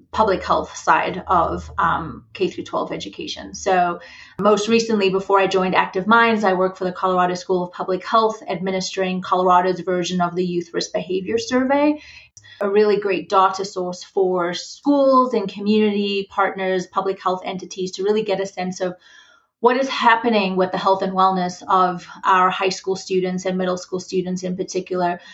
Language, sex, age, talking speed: English, female, 30-49, 170 wpm